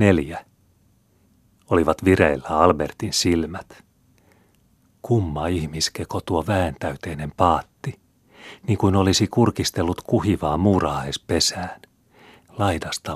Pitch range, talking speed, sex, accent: 75-95 Hz, 80 wpm, male, native